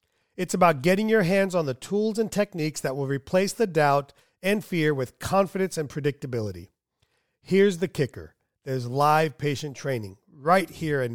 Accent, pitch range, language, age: American, 135-185 Hz, English, 40-59